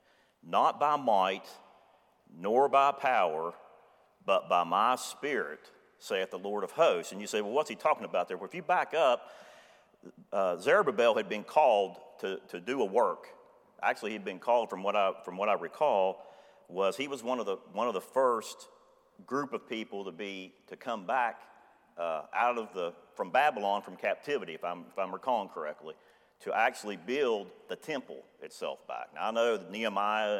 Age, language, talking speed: 50-69, English, 185 wpm